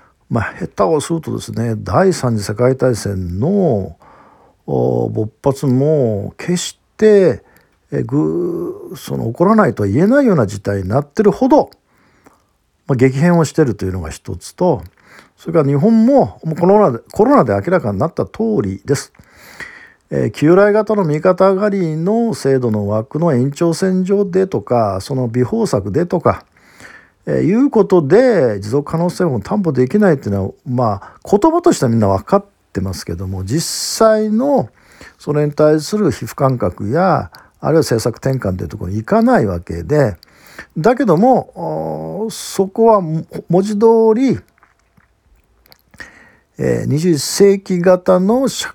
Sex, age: male, 50-69